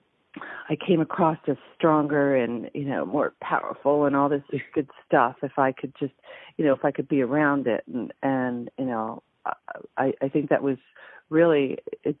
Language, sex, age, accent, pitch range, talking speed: English, female, 40-59, American, 135-160 Hz, 185 wpm